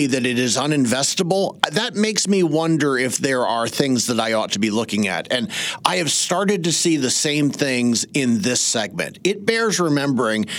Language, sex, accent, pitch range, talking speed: English, male, American, 115-145 Hz, 195 wpm